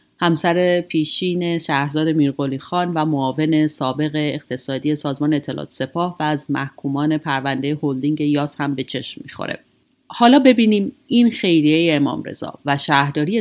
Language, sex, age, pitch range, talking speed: Persian, female, 30-49, 145-200 Hz, 135 wpm